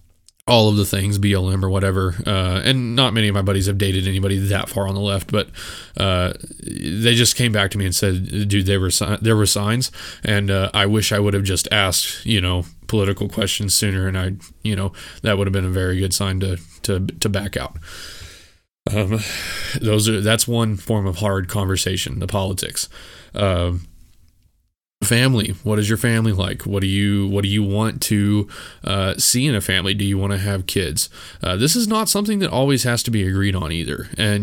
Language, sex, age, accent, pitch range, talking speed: English, male, 20-39, American, 95-115 Hz, 215 wpm